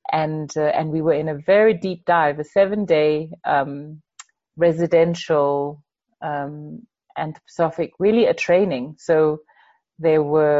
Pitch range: 150-185 Hz